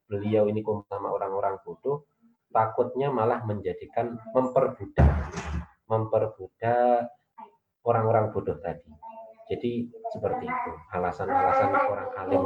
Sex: male